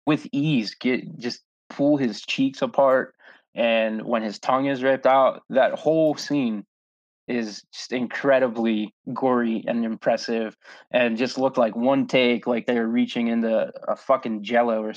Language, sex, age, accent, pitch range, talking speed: English, male, 20-39, American, 115-145 Hz, 150 wpm